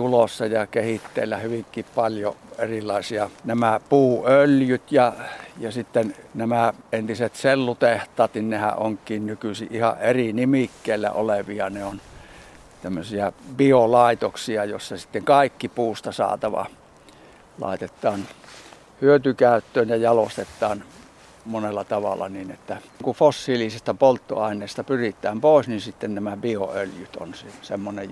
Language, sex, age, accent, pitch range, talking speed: Finnish, male, 60-79, native, 105-135 Hz, 100 wpm